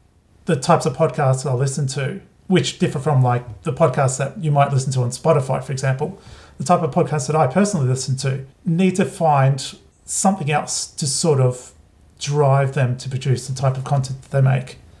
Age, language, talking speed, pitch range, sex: 40-59, English, 205 wpm, 130-155 Hz, male